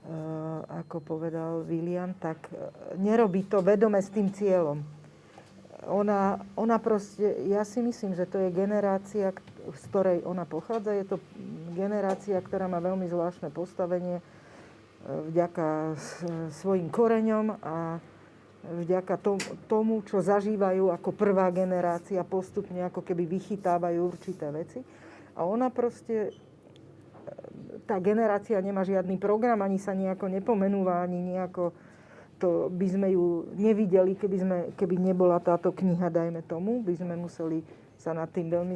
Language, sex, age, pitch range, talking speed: Slovak, female, 40-59, 175-205 Hz, 140 wpm